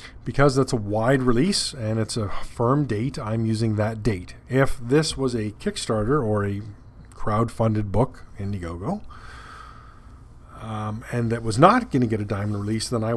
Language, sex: English, male